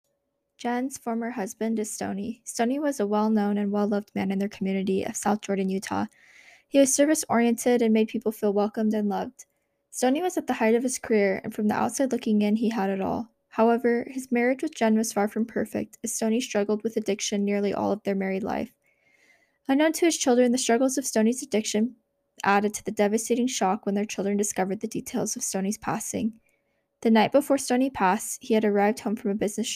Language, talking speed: English, 205 wpm